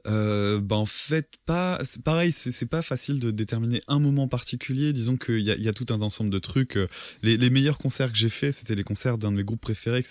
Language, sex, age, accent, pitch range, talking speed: French, male, 20-39, French, 95-115 Hz, 265 wpm